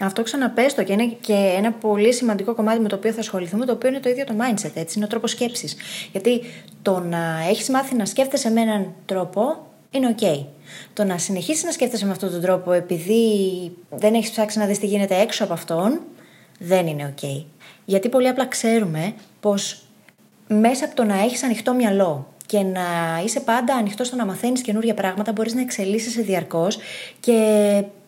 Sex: female